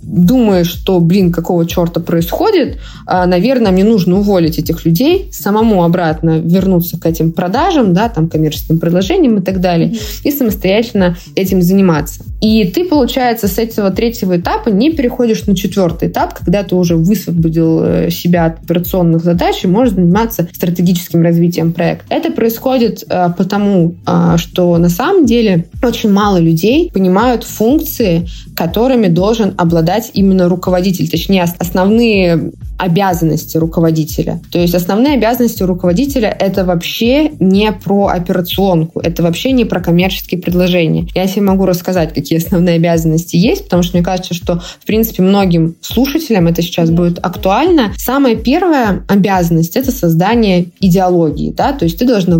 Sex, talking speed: female, 145 wpm